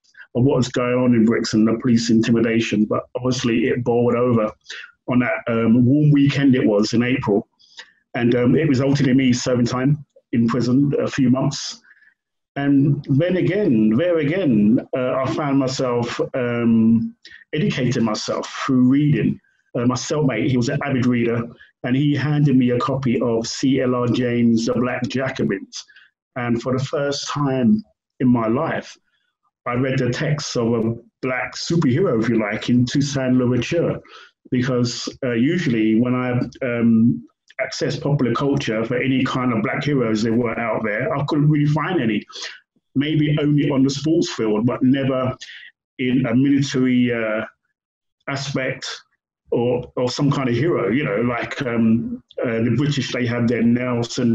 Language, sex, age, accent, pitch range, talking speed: English, male, 40-59, British, 120-140 Hz, 165 wpm